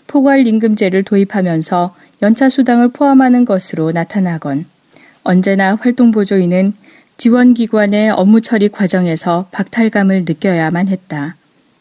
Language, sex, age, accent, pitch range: Korean, female, 20-39, native, 185-230 Hz